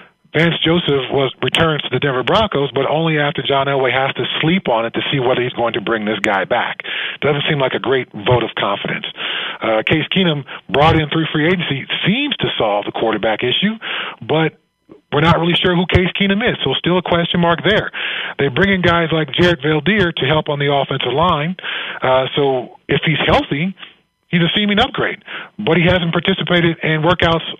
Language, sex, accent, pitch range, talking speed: English, male, American, 135-175 Hz, 200 wpm